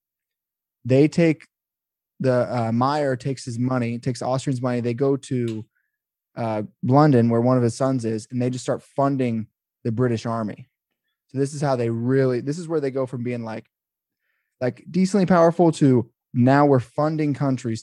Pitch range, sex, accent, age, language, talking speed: 115-145 Hz, male, American, 20-39, English, 175 wpm